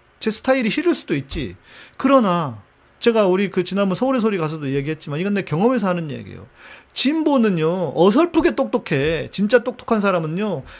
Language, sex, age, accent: Korean, male, 40-59, native